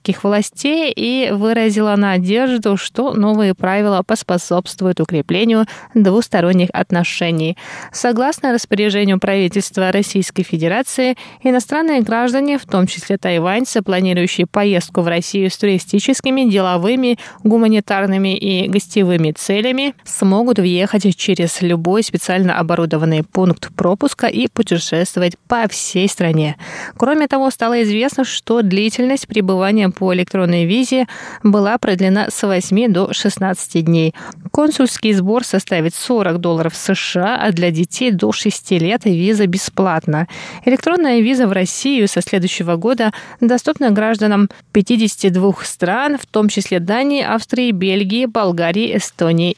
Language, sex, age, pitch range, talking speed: Russian, female, 20-39, 180-230 Hz, 115 wpm